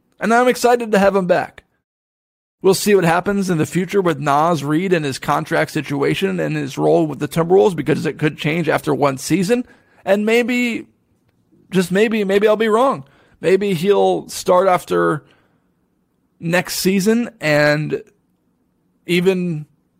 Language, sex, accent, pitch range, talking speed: English, male, American, 155-195 Hz, 150 wpm